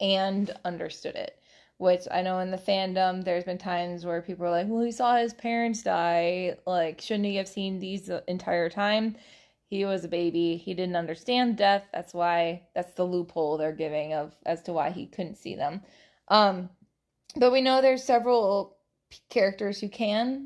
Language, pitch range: English, 175-205 Hz